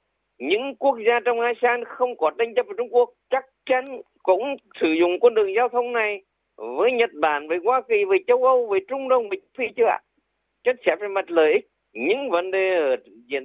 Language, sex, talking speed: Vietnamese, male, 215 wpm